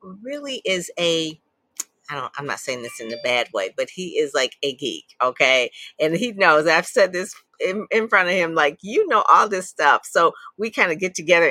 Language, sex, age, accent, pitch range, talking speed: English, female, 40-59, American, 130-170 Hz, 225 wpm